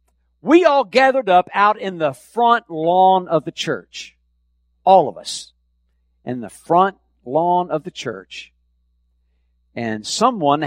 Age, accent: 60-79, American